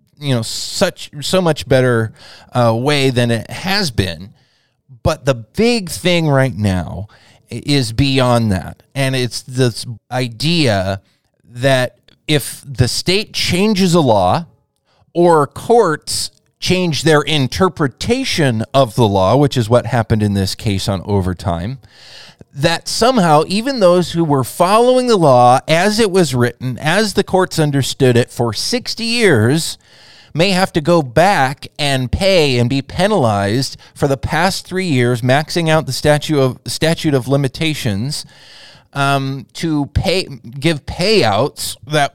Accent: American